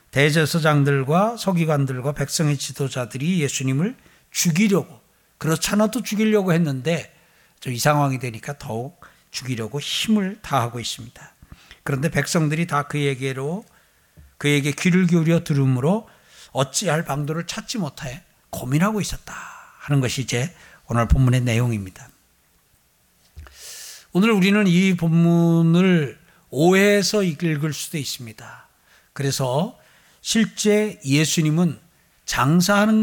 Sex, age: male, 60-79